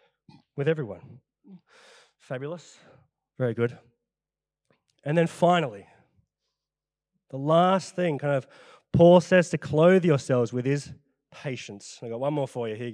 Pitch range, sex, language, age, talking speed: 125-175 Hz, male, English, 20-39, 135 wpm